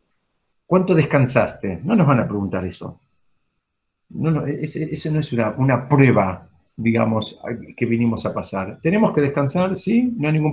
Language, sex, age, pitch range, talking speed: Spanish, male, 50-69, 120-160 Hz, 160 wpm